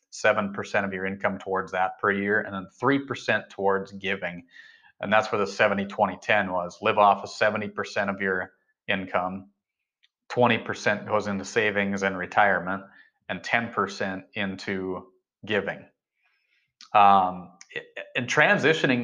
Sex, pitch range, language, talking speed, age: male, 95-110 Hz, English, 125 wpm, 30-49